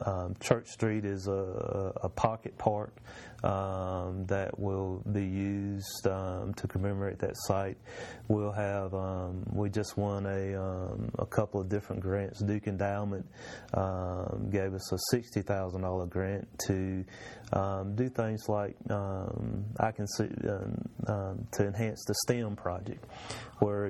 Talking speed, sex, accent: 150 wpm, male, American